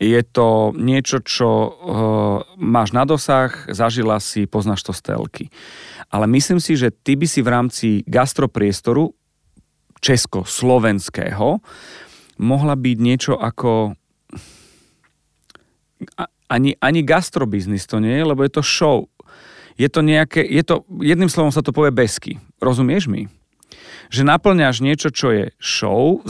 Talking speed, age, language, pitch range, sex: 130 wpm, 40-59, Slovak, 110-140 Hz, male